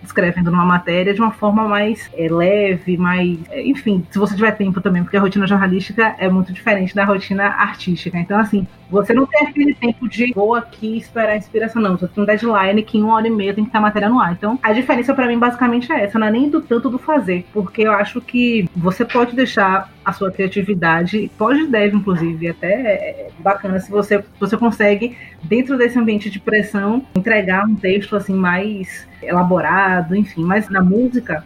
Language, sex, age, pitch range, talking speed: Portuguese, female, 20-39, 185-225 Hz, 210 wpm